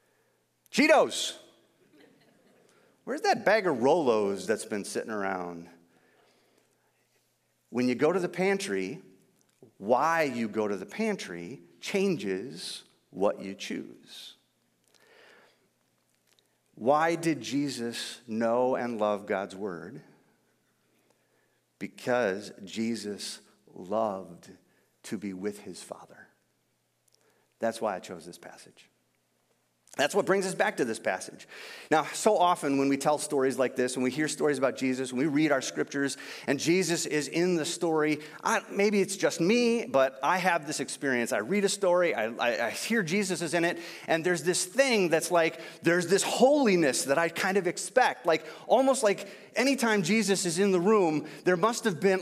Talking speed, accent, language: 150 wpm, American, English